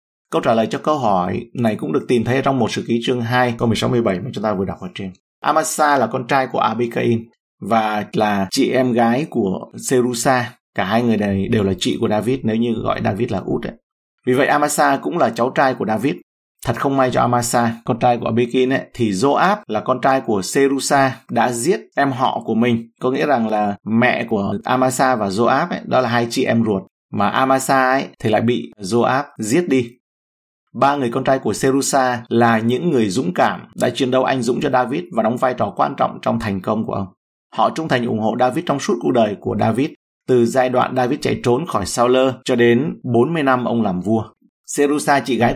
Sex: male